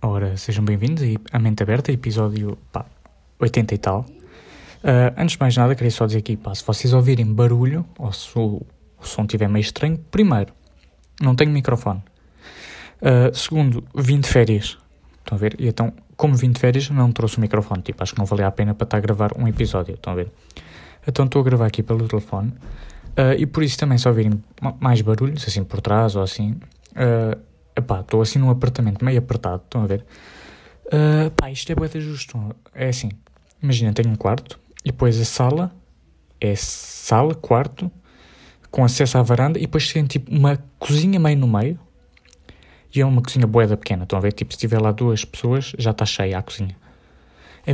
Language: Portuguese